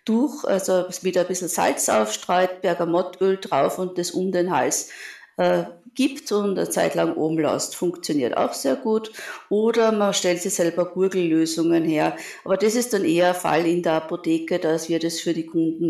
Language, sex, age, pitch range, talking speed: German, female, 50-69, 165-200 Hz, 180 wpm